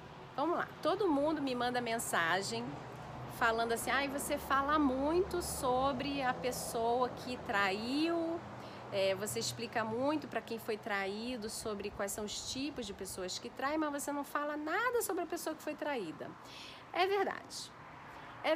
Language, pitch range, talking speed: Portuguese, 210-285 Hz, 155 wpm